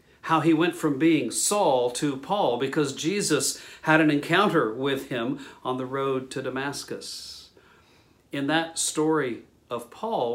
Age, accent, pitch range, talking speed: 50-69, American, 125-165 Hz, 145 wpm